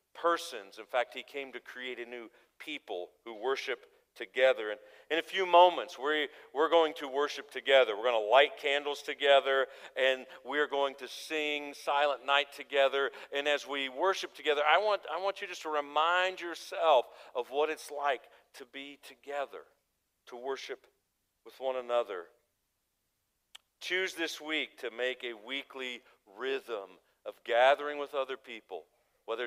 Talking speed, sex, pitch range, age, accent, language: 155 wpm, male, 130-175 Hz, 50-69, American, English